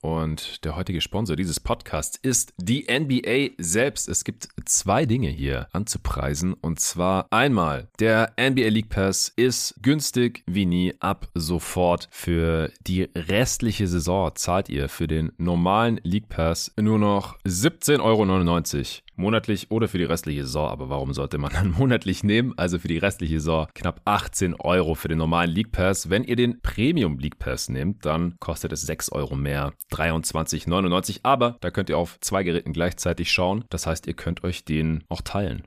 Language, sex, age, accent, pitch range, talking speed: German, male, 30-49, German, 80-105 Hz, 170 wpm